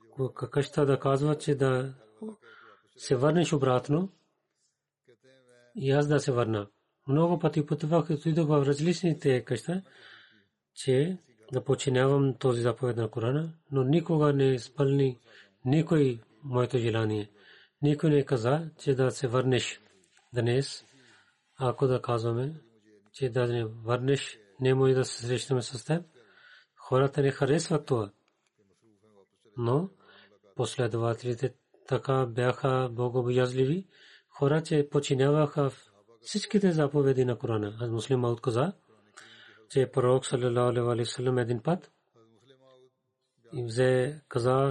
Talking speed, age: 120 wpm, 40-59